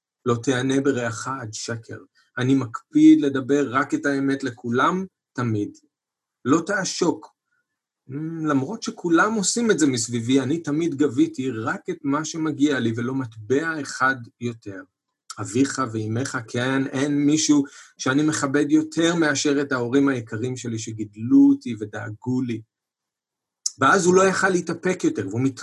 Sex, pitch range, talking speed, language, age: male, 120-155 Hz, 135 wpm, Hebrew, 40-59